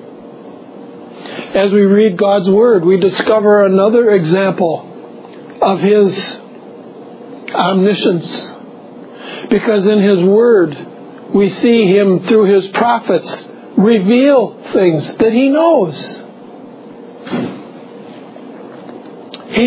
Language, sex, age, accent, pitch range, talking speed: English, male, 60-79, American, 220-255 Hz, 85 wpm